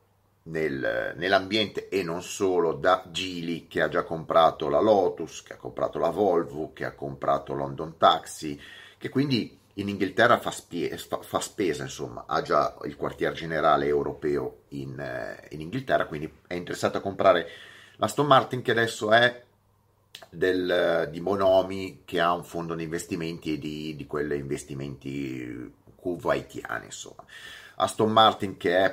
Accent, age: native, 30-49